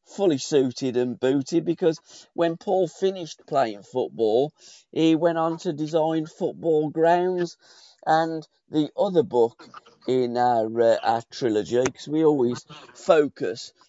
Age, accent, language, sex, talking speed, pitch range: 40-59, British, English, male, 130 wpm, 135-170 Hz